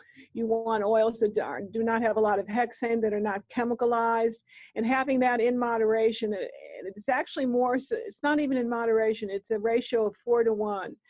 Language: English